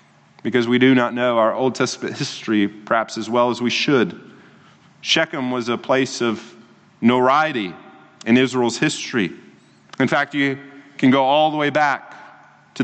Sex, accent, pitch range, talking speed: male, American, 120-150 Hz, 160 wpm